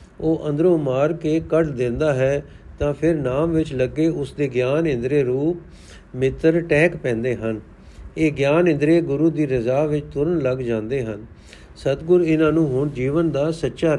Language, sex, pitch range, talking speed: Punjabi, male, 125-165 Hz, 165 wpm